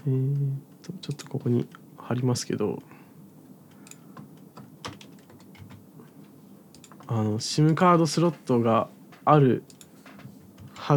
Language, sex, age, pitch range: Japanese, male, 20-39, 120-160 Hz